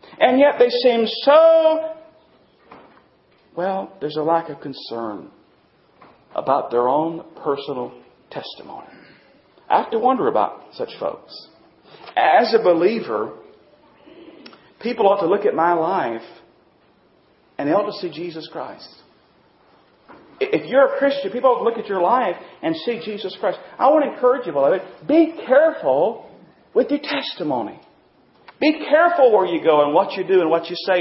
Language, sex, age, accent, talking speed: English, male, 40-59, American, 155 wpm